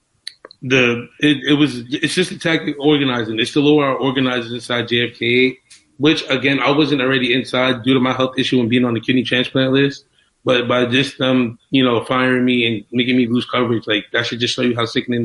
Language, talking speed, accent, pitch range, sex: English, 220 wpm, American, 120-140 Hz, male